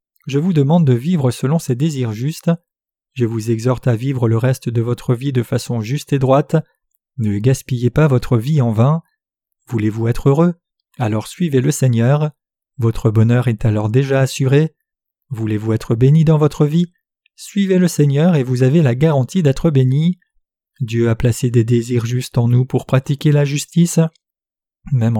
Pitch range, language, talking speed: 120-160 Hz, French, 175 wpm